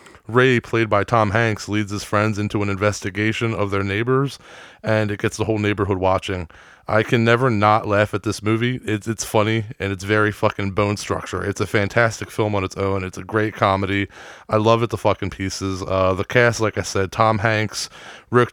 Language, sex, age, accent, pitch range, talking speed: English, male, 30-49, American, 105-120 Hz, 205 wpm